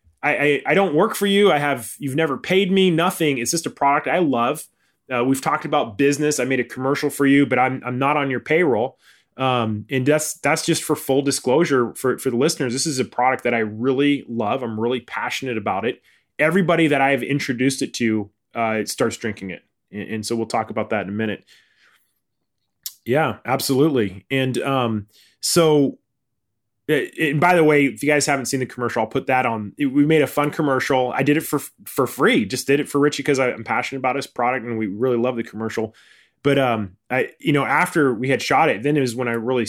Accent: American